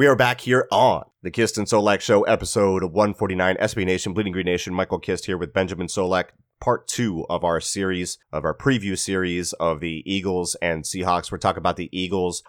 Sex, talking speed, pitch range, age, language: male, 200 wpm, 90-110 Hz, 30-49, English